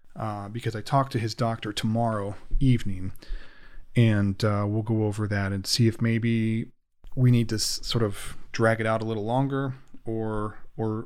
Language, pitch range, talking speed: English, 105-125 Hz, 175 wpm